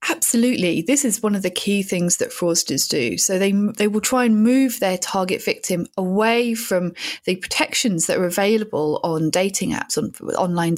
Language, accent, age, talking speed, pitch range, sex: English, British, 30-49, 185 wpm, 175-235 Hz, female